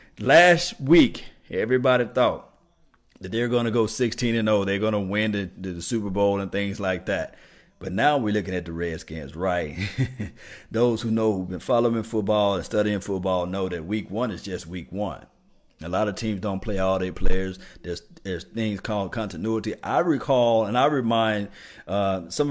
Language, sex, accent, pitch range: English, male, American, 95-115 Hz